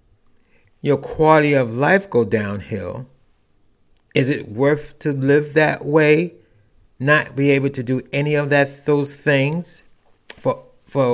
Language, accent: English, American